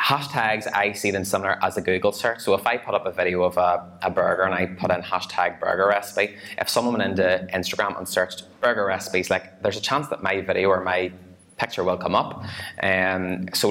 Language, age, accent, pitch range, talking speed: English, 20-39, Irish, 90-100 Hz, 225 wpm